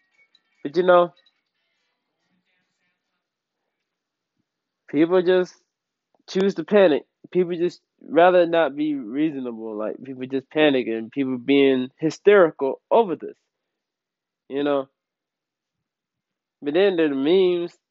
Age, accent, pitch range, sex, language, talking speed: 20-39, American, 135-180 Hz, male, English, 100 wpm